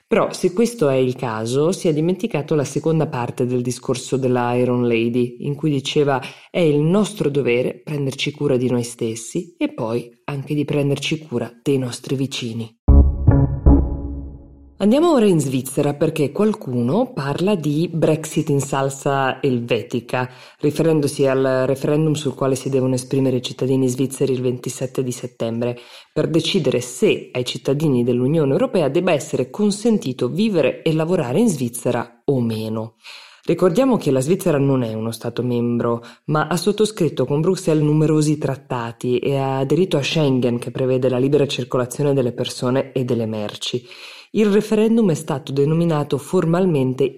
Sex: female